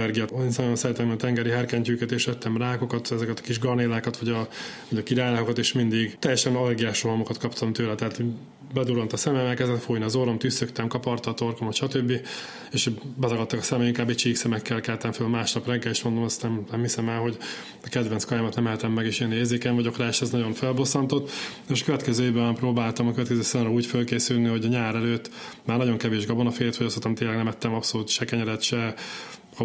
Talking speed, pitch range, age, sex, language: 190 wpm, 115-125 Hz, 20-39, male, Hungarian